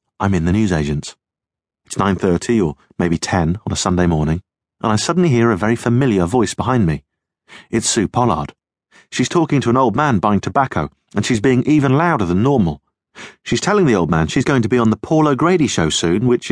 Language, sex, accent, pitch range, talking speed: English, male, British, 95-130 Hz, 205 wpm